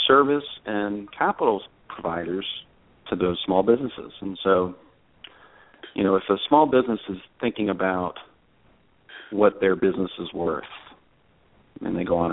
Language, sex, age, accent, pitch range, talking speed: English, male, 40-59, American, 85-100 Hz, 135 wpm